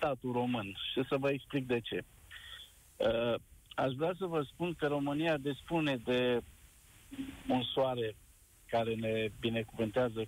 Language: Romanian